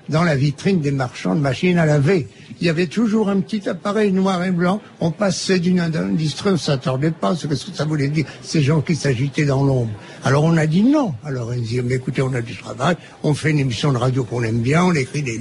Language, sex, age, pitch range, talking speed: French, male, 60-79, 140-210 Hz, 250 wpm